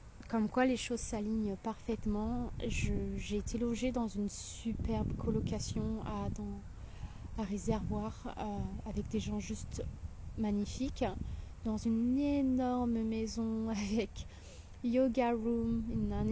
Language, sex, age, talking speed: French, female, 20-39, 110 wpm